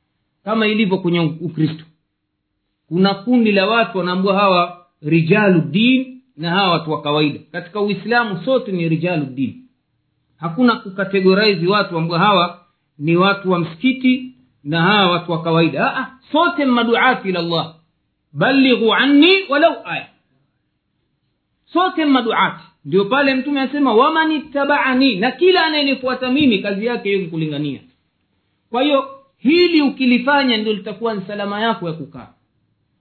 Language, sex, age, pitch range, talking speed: Swahili, male, 50-69, 170-255 Hz, 130 wpm